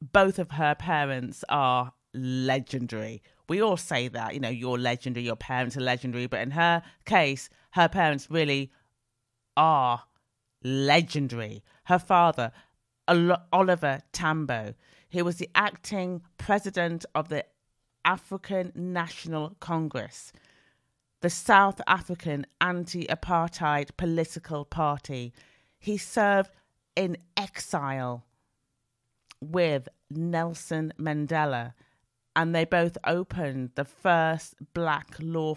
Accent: British